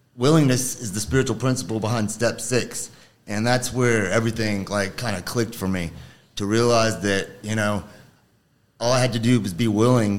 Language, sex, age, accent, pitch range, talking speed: English, male, 30-49, American, 110-130 Hz, 185 wpm